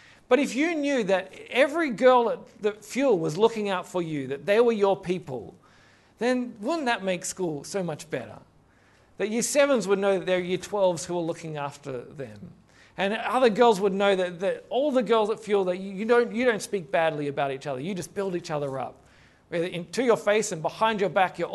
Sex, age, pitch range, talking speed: male, 40-59, 165-225 Hz, 220 wpm